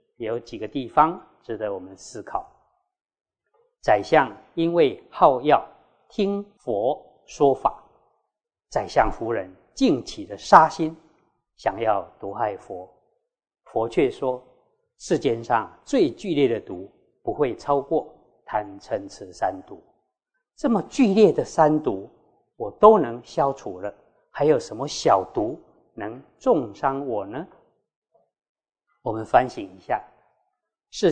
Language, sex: Chinese, male